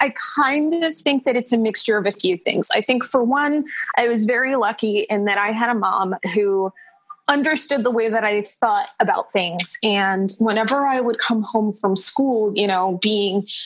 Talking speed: 200 wpm